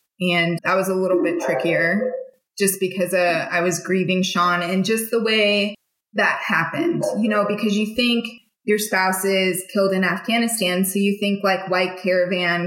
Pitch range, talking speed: 175-210 Hz, 175 wpm